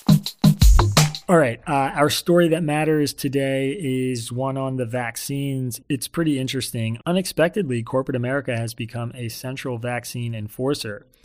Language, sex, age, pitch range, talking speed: English, male, 30-49, 115-140 Hz, 135 wpm